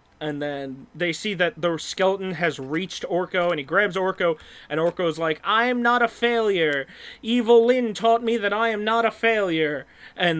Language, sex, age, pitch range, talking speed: English, male, 20-39, 160-220 Hz, 190 wpm